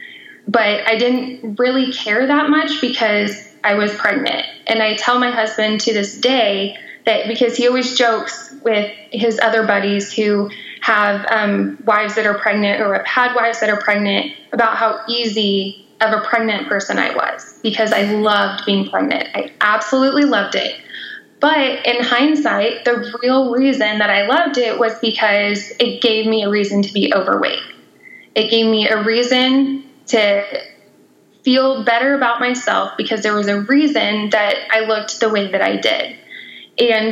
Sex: female